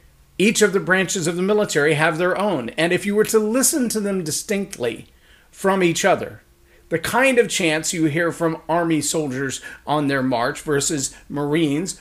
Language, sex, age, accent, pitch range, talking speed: English, male, 40-59, American, 145-190 Hz, 180 wpm